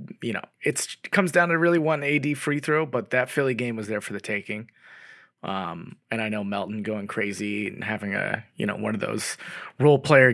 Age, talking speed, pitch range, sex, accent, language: 20-39, 220 wpm, 110-130 Hz, male, American, English